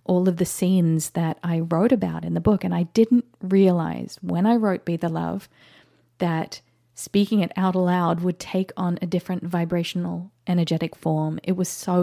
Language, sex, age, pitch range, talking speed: English, female, 30-49, 165-190 Hz, 185 wpm